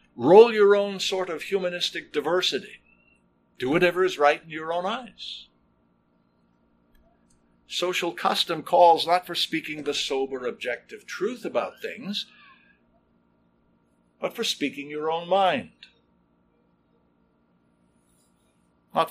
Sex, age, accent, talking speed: male, 60-79, American, 105 wpm